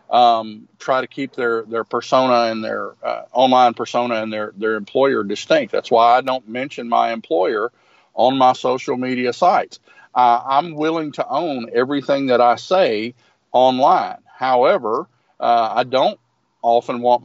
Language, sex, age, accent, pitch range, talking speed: English, male, 40-59, American, 110-130 Hz, 155 wpm